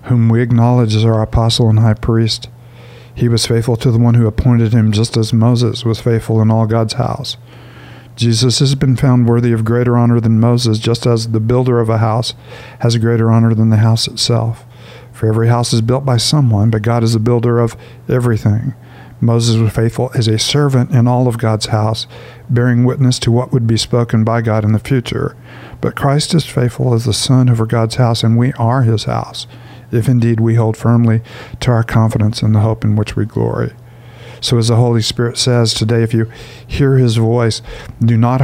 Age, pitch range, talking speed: 50-69, 115-120 Hz, 210 wpm